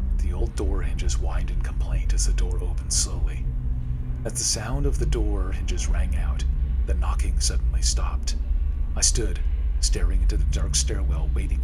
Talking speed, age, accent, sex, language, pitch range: 170 wpm, 40-59, American, male, English, 65-70 Hz